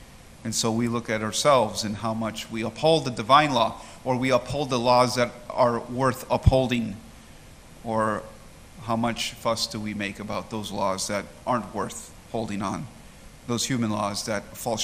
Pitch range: 110-130 Hz